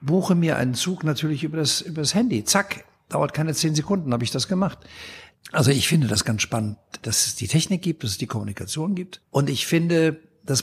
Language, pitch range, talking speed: German, 125-160 Hz, 215 wpm